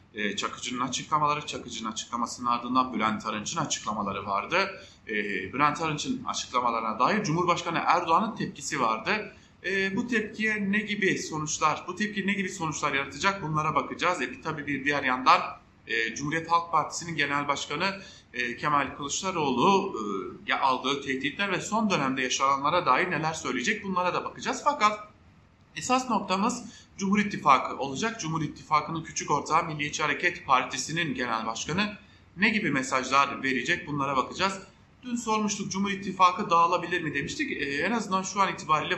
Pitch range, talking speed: 135-195 Hz, 145 wpm